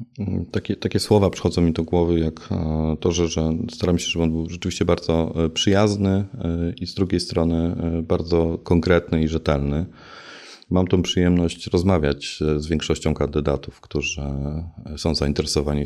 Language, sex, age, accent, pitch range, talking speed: Polish, male, 30-49, native, 75-90 Hz, 140 wpm